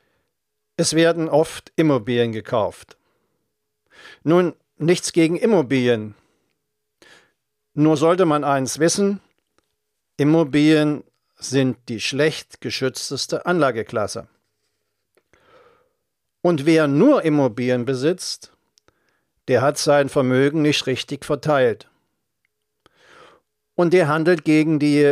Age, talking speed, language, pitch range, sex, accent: 50-69, 90 wpm, German, 130-165 Hz, male, German